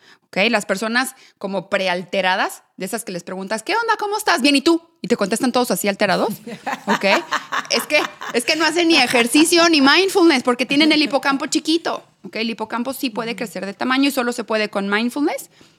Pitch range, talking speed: 185-255 Hz, 200 wpm